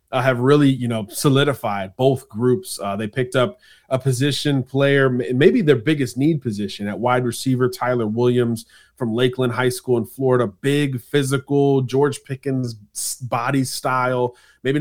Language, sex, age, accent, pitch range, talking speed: English, male, 30-49, American, 115-130 Hz, 155 wpm